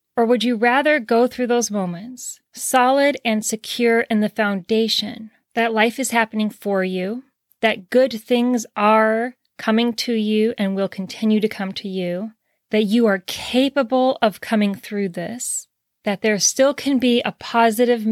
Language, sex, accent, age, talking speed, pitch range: English, female, American, 20-39, 160 wpm, 205-245 Hz